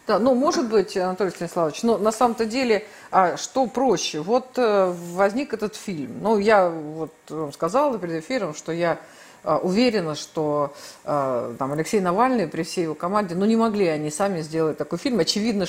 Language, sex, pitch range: Russian, female, 175-235 Hz